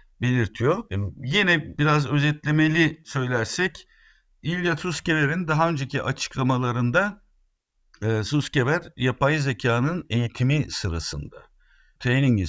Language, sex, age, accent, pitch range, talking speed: Turkish, male, 60-79, native, 110-150 Hz, 75 wpm